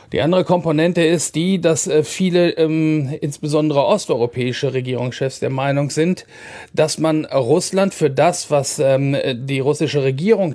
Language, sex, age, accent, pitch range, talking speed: German, male, 40-59, German, 130-160 Hz, 125 wpm